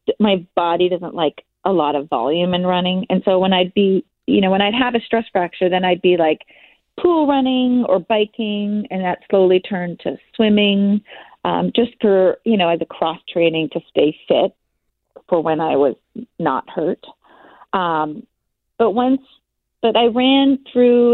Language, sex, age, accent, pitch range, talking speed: English, female, 40-59, American, 180-220 Hz, 175 wpm